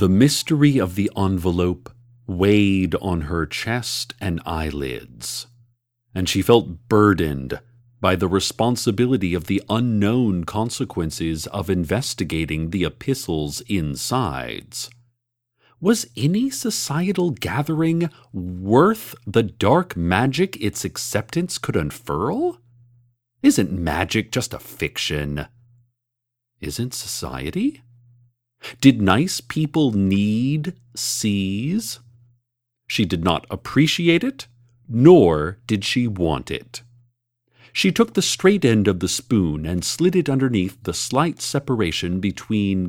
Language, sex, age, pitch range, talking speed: English, male, 40-59, 95-135 Hz, 110 wpm